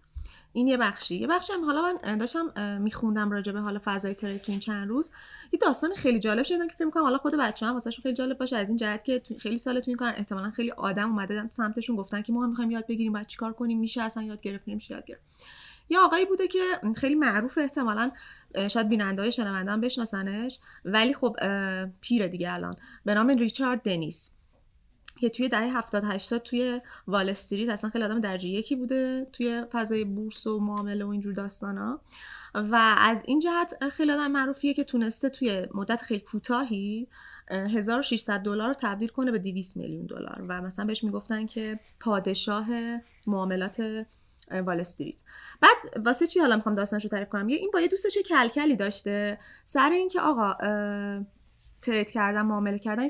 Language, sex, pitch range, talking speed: Persian, female, 205-270 Hz, 175 wpm